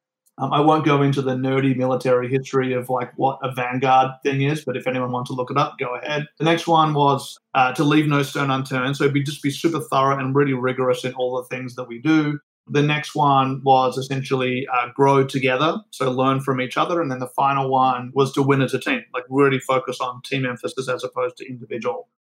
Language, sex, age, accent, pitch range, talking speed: English, male, 30-49, Australian, 125-140 Hz, 235 wpm